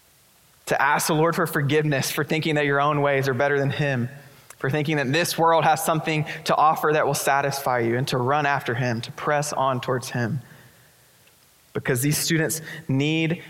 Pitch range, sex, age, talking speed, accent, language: 135-165 Hz, male, 20-39, 190 wpm, American, English